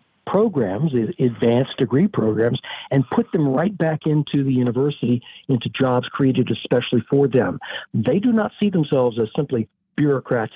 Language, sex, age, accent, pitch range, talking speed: English, male, 60-79, American, 125-185 Hz, 150 wpm